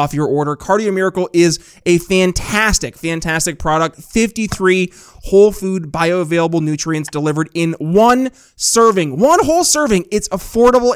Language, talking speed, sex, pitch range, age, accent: English, 130 wpm, male, 160-210 Hz, 20-39, American